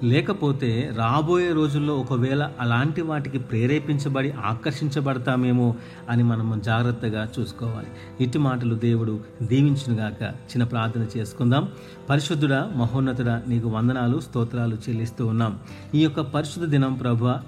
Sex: male